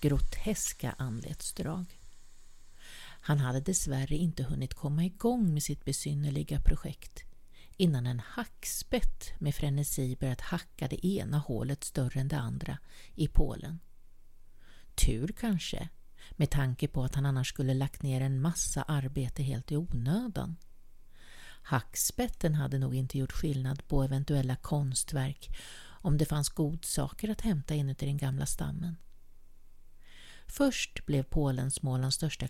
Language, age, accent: Swedish, 50-69, native